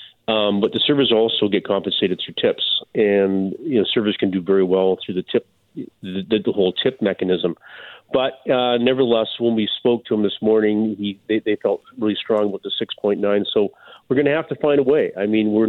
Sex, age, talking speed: male, 40-59, 220 wpm